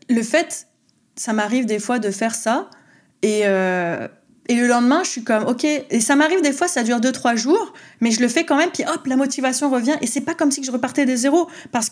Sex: female